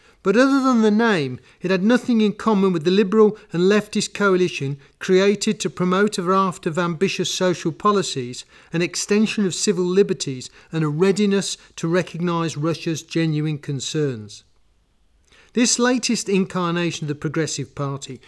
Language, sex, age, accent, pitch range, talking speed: English, male, 40-59, British, 150-210 Hz, 150 wpm